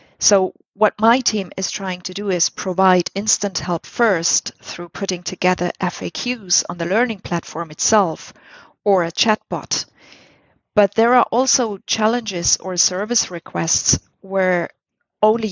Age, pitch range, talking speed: 30-49, 180-220 Hz, 135 wpm